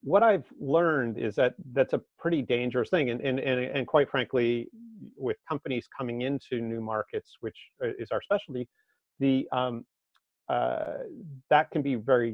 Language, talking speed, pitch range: English, 160 wpm, 115-140 Hz